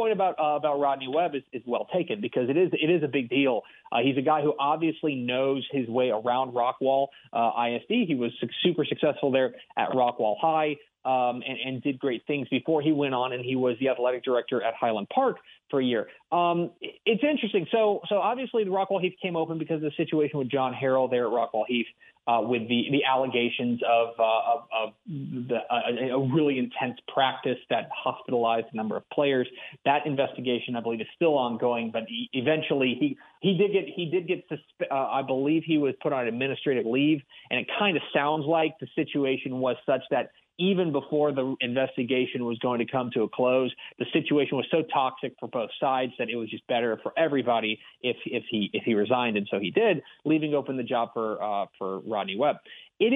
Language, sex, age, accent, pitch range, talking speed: English, male, 30-49, American, 125-155 Hz, 215 wpm